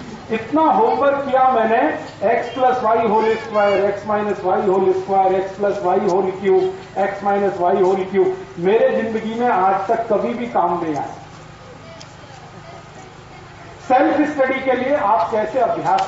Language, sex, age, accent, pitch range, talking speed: Hindi, male, 40-59, native, 195-265 Hz, 155 wpm